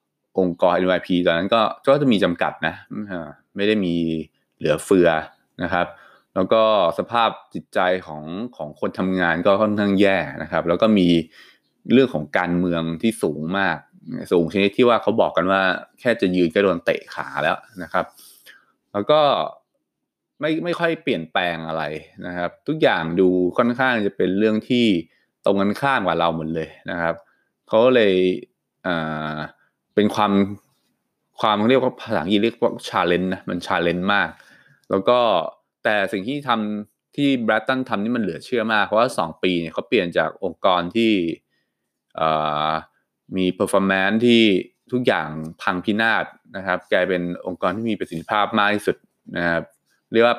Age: 20-39